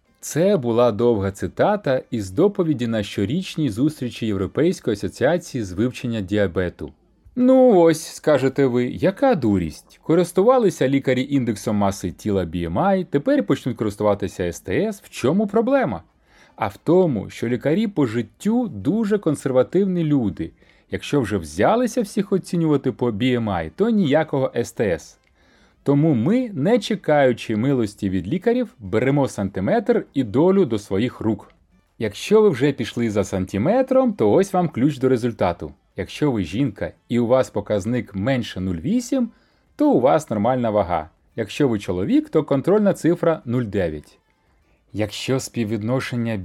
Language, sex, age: Ukrainian, male, 30-49